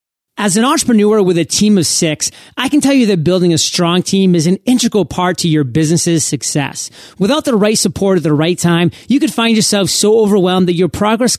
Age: 30-49